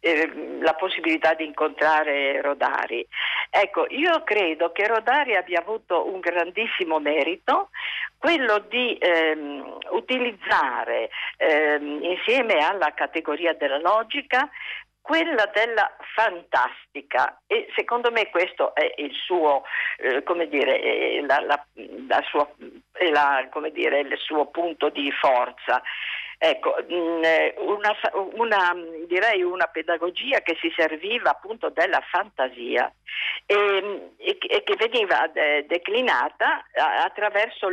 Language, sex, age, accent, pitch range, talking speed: Italian, female, 50-69, native, 155-250 Hz, 90 wpm